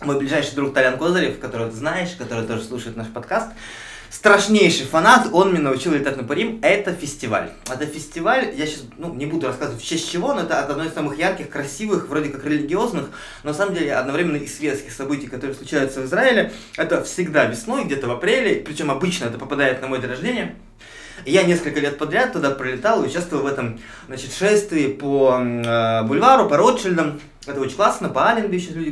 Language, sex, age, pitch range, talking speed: Russian, male, 20-39, 130-165 Hz, 195 wpm